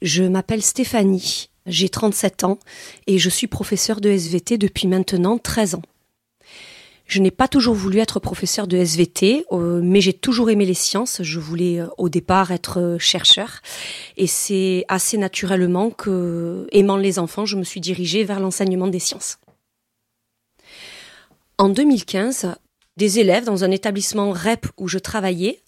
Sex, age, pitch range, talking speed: female, 30-49, 185-225 Hz, 150 wpm